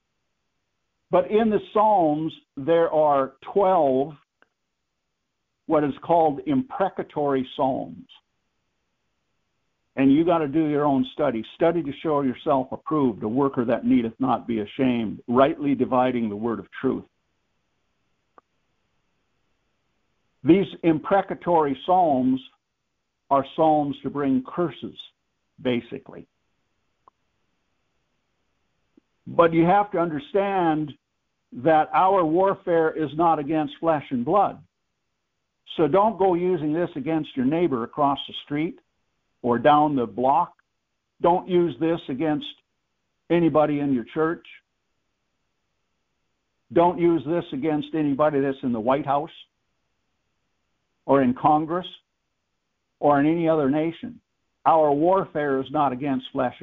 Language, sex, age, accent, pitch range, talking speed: English, male, 60-79, American, 135-170 Hz, 115 wpm